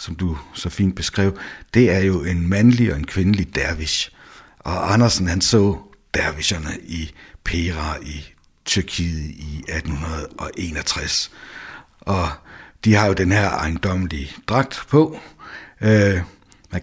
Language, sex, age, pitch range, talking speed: Danish, male, 60-79, 80-95 Hz, 125 wpm